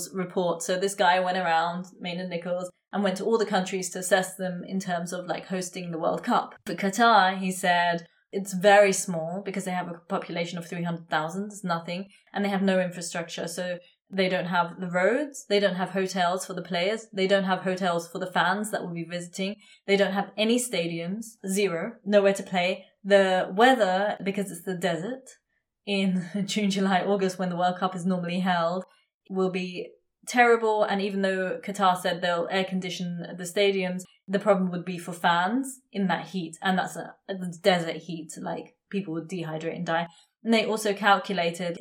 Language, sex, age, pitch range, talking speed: English, female, 20-39, 175-200 Hz, 190 wpm